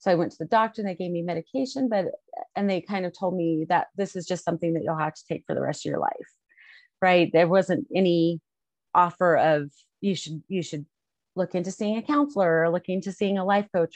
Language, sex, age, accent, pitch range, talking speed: English, female, 30-49, American, 165-205 Hz, 240 wpm